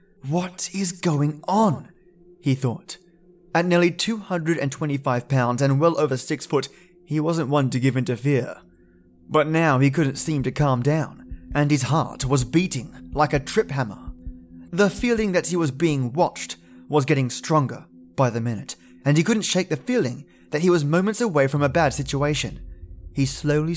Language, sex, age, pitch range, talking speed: English, male, 20-39, 130-175 Hz, 175 wpm